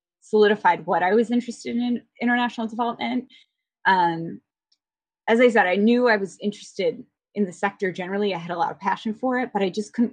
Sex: female